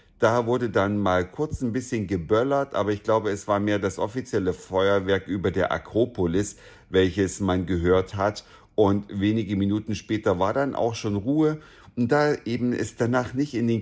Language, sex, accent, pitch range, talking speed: German, male, German, 100-125 Hz, 180 wpm